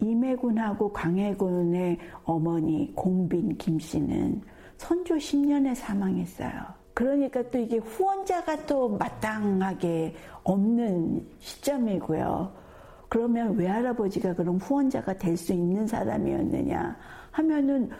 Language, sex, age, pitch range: Korean, female, 60-79, 190-270 Hz